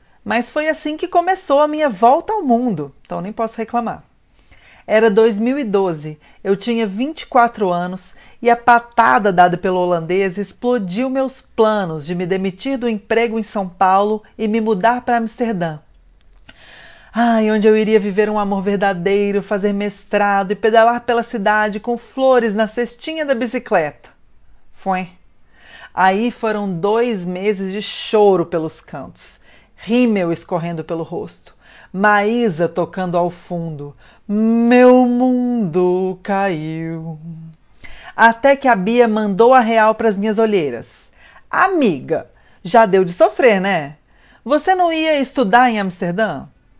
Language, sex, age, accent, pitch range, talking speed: Portuguese, female, 40-59, Brazilian, 190-245 Hz, 135 wpm